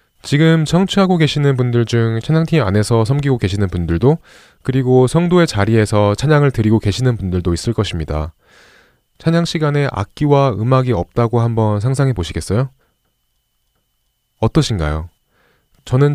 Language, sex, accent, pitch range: Korean, male, native, 95-140 Hz